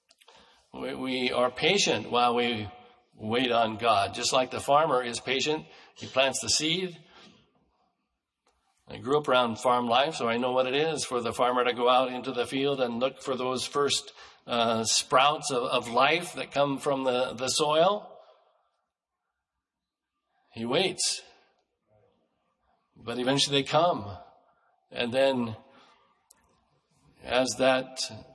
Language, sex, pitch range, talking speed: English, male, 125-150 Hz, 140 wpm